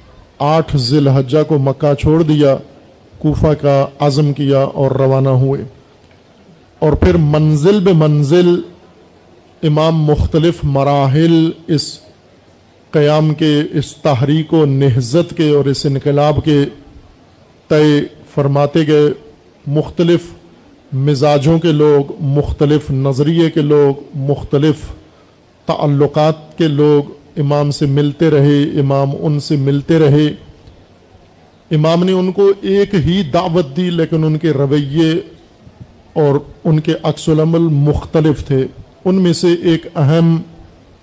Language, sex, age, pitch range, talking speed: Urdu, male, 50-69, 140-160 Hz, 120 wpm